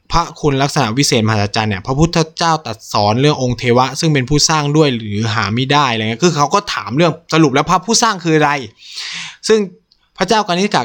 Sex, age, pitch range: male, 20-39, 120-170 Hz